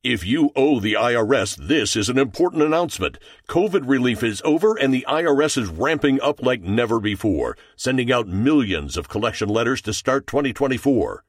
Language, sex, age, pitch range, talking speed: English, male, 60-79, 110-145 Hz, 170 wpm